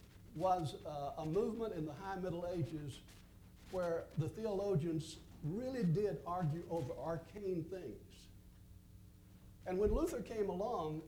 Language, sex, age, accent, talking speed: English, male, 60-79, American, 125 wpm